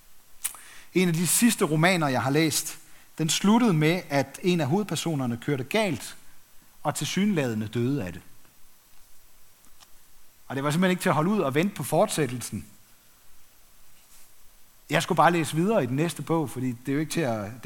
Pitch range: 125-180 Hz